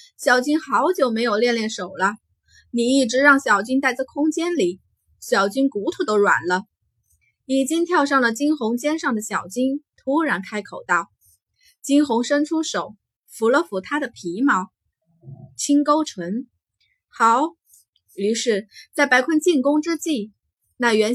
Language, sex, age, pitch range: Chinese, female, 20-39, 200-290 Hz